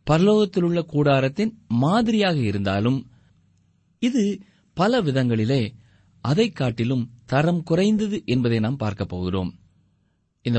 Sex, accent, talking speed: male, native, 95 wpm